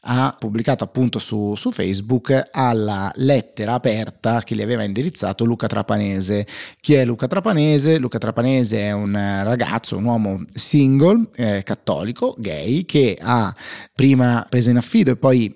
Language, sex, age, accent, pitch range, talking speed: Italian, male, 30-49, native, 105-130 Hz, 145 wpm